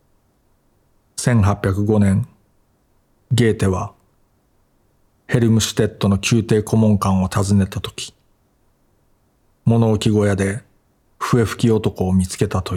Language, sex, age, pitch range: Japanese, male, 40-59, 95-110 Hz